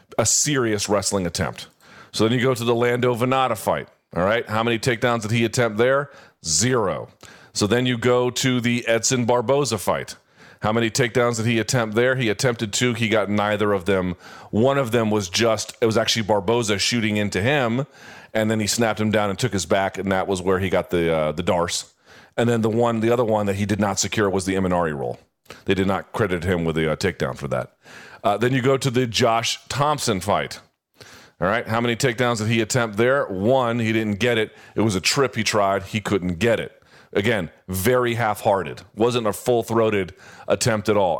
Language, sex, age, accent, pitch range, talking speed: English, male, 40-59, American, 100-125 Hz, 215 wpm